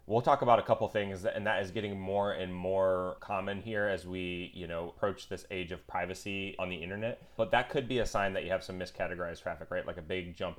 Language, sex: English, male